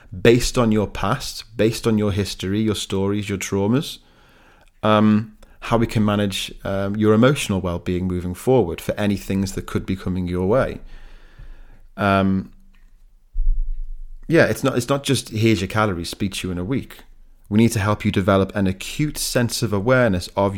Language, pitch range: English, 95-110 Hz